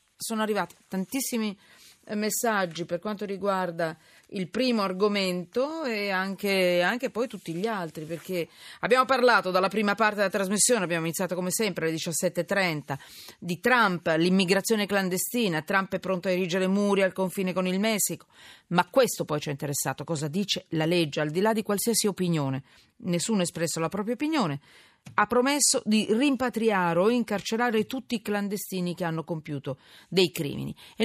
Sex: female